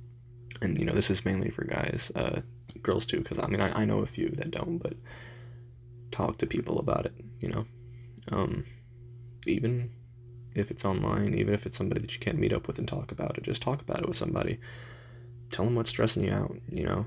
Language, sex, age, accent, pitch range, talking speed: English, male, 20-39, American, 110-120 Hz, 220 wpm